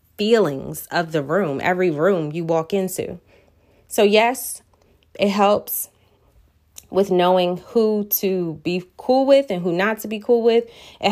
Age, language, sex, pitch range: 20-39, English, female, 170-220 Hz